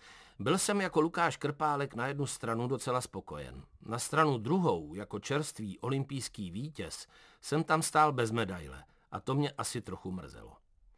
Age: 50-69